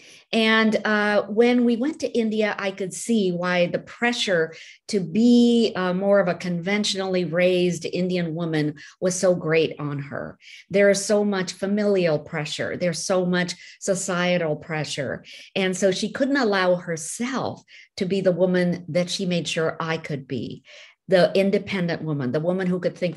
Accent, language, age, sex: American, English, 50-69, female